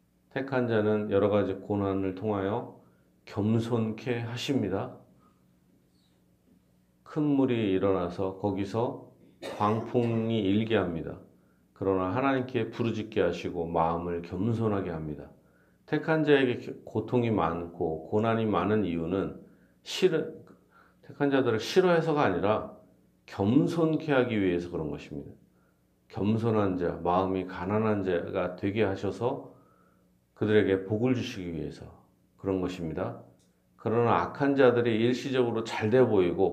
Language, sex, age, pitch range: Korean, male, 40-59, 80-115 Hz